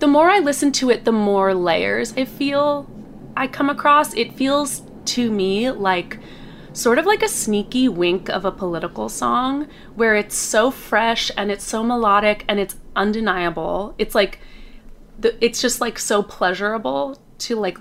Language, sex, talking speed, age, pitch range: English, female, 170 wpm, 20-39, 190-240 Hz